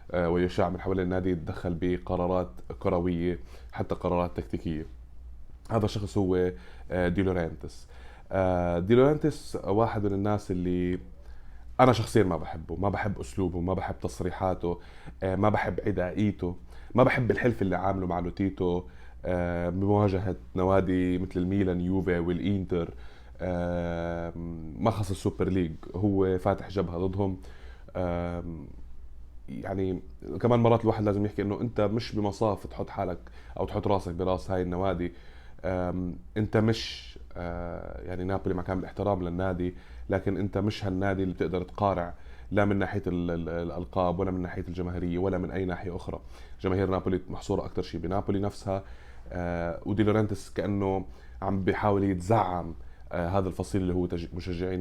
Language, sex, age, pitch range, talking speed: Arabic, male, 20-39, 85-100 Hz, 130 wpm